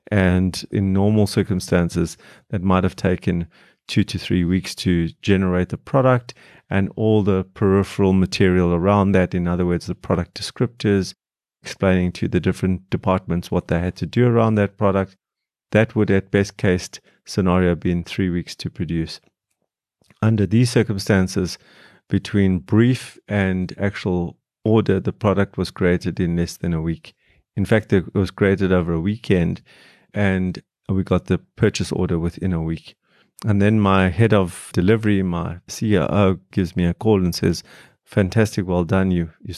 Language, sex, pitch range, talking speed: English, male, 90-105 Hz, 160 wpm